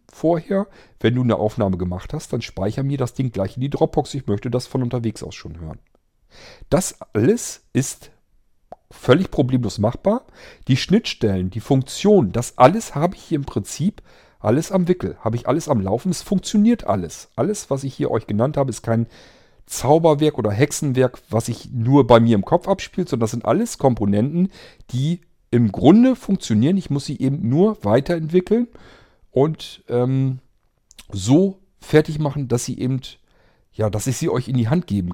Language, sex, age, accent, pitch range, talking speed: German, male, 40-59, German, 105-150 Hz, 180 wpm